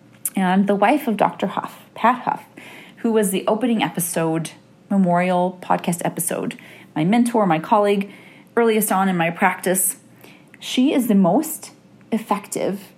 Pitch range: 185-245 Hz